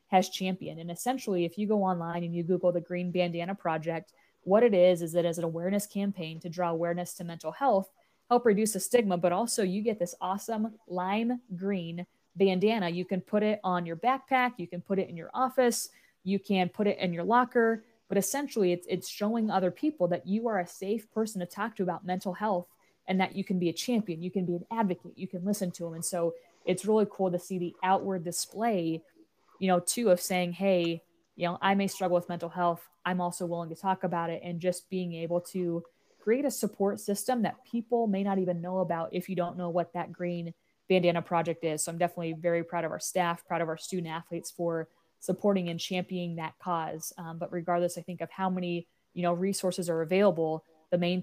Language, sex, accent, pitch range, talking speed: English, female, American, 170-195 Hz, 225 wpm